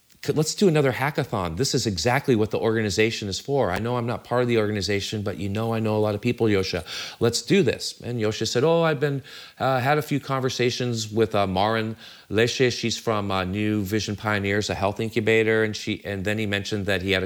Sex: male